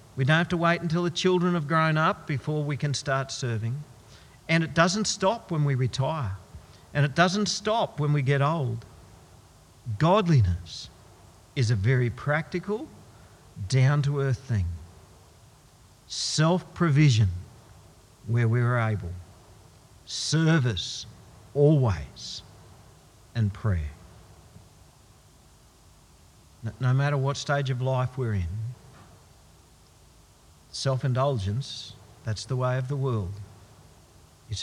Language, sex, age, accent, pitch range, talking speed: English, male, 50-69, Australian, 100-135 Hz, 110 wpm